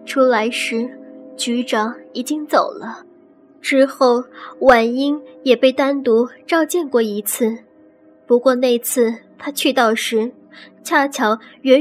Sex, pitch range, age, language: male, 235-290 Hz, 10-29, Chinese